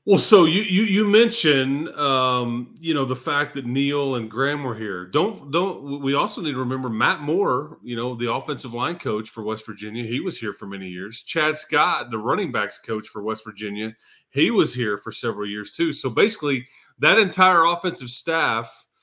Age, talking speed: 30-49, 200 wpm